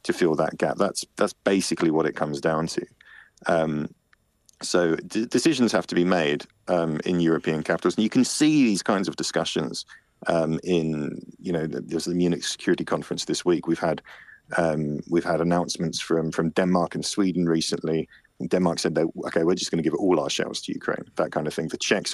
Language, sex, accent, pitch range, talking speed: English, male, British, 80-90 Hz, 210 wpm